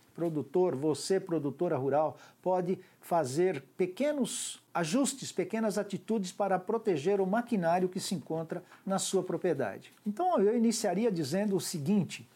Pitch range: 150-200 Hz